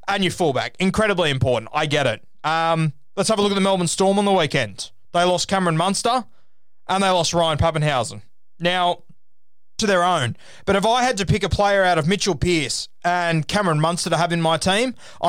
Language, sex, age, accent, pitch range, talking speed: English, male, 20-39, Australian, 150-205 Hz, 210 wpm